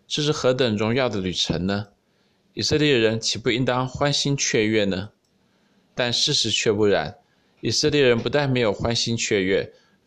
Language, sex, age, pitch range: Chinese, male, 20-39, 110-135 Hz